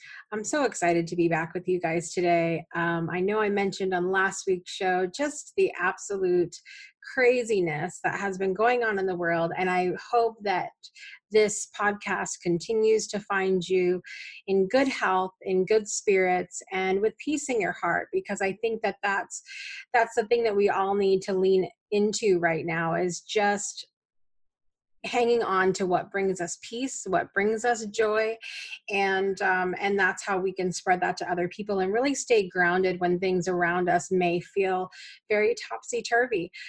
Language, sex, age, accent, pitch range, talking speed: English, female, 30-49, American, 185-225 Hz, 175 wpm